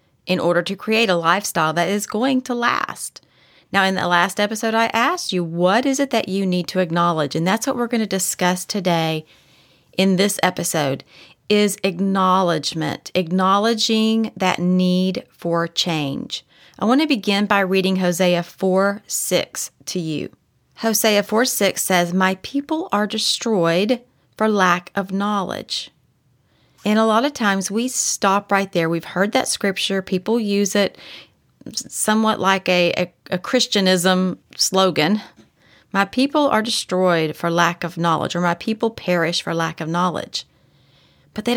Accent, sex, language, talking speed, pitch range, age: American, female, English, 155 wpm, 180-225 Hz, 30-49